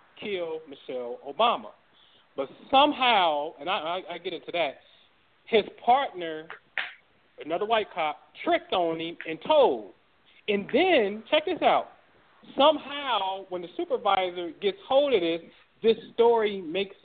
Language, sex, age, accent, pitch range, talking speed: English, male, 40-59, American, 165-230 Hz, 130 wpm